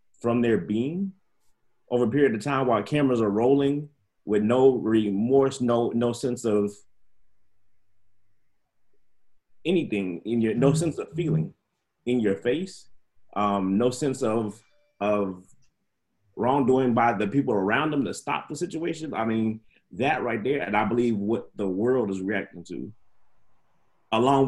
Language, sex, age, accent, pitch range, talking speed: English, male, 30-49, American, 100-125 Hz, 145 wpm